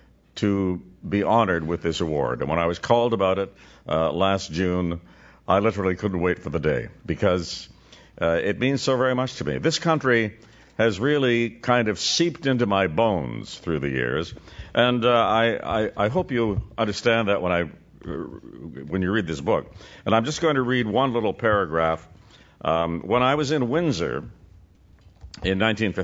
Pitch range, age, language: 90-120 Hz, 60-79, English